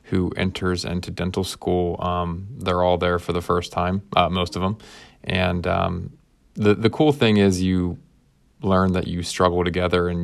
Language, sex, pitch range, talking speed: English, male, 90-95 Hz, 180 wpm